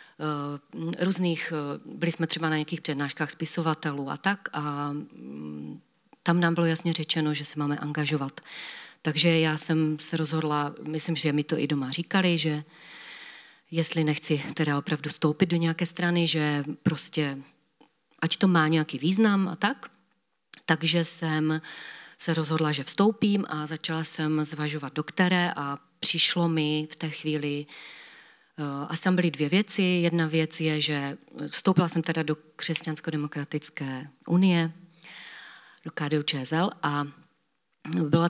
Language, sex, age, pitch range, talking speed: Czech, female, 40-59, 150-170 Hz, 135 wpm